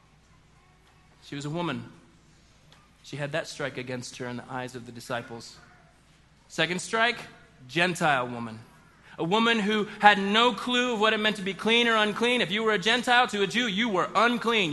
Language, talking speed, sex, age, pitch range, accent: English, 190 wpm, male, 30-49, 160-235 Hz, American